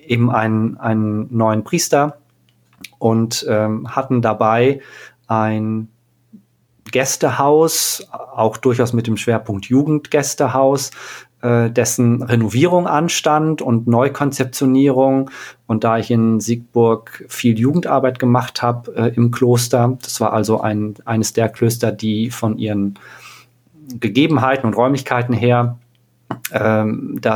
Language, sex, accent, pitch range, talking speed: German, male, German, 115-130 Hz, 110 wpm